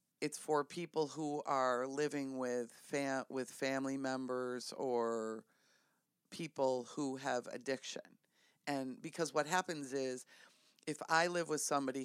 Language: English